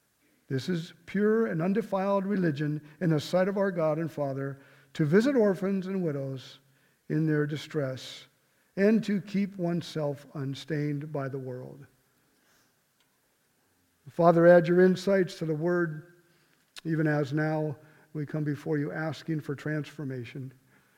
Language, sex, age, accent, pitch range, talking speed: English, male, 50-69, American, 150-195 Hz, 135 wpm